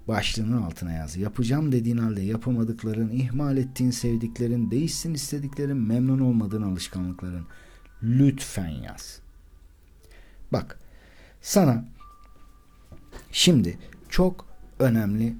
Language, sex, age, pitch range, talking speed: Turkish, male, 60-79, 90-135 Hz, 85 wpm